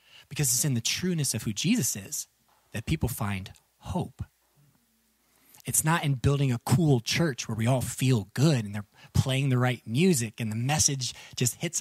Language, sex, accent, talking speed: English, male, American, 185 wpm